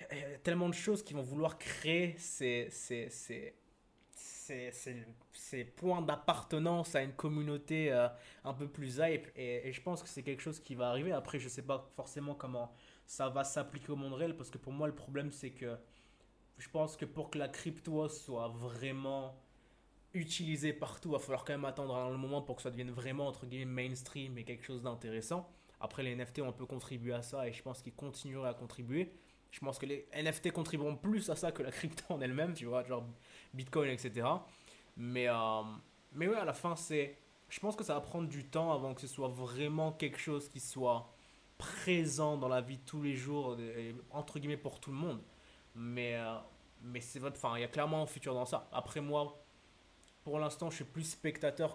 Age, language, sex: 20-39, French, male